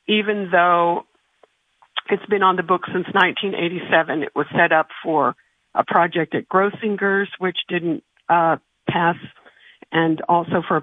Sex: female